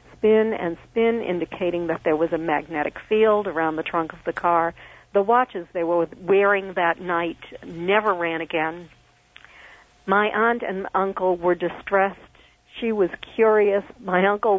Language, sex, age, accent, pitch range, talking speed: English, female, 50-69, American, 175-210 Hz, 150 wpm